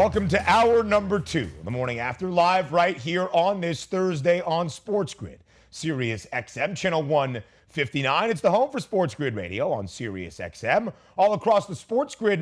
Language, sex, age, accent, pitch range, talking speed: English, male, 40-59, American, 125-195 Hz, 175 wpm